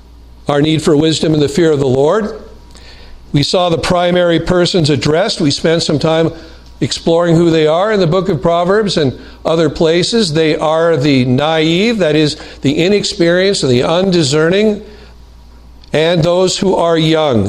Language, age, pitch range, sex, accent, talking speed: English, 50-69, 125-170 Hz, male, American, 165 wpm